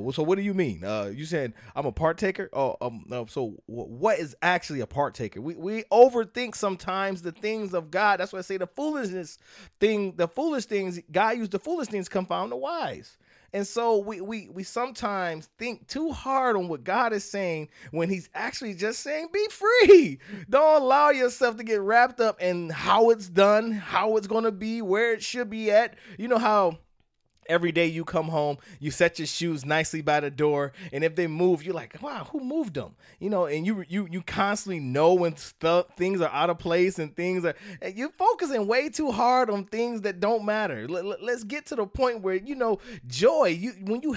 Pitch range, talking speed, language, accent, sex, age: 170-225 Hz, 210 wpm, English, American, male, 20-39